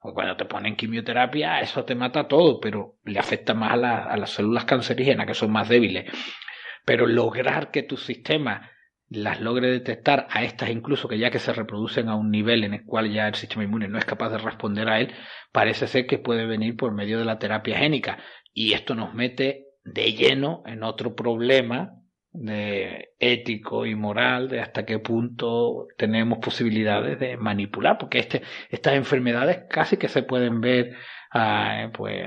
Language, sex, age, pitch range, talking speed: Spanish, male, 40-59, 110-125 Hz, 180 wpm